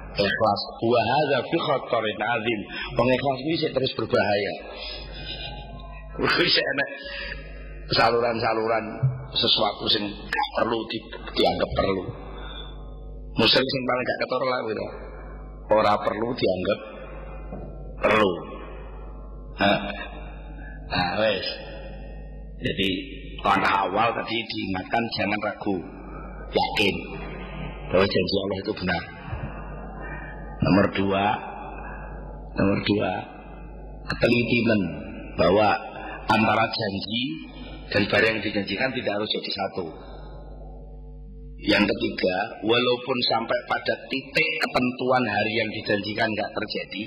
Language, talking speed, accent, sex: English, 75 wpm, Indonesian, male